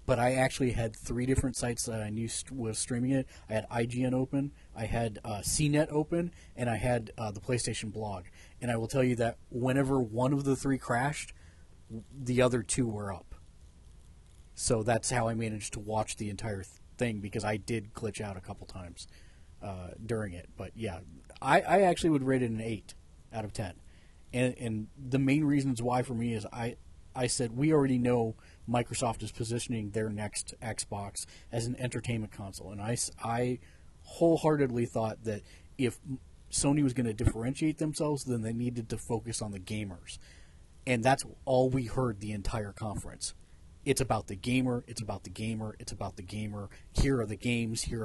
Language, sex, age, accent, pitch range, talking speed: English, male, 30-49, American, 100-125 Hz, 190 wpm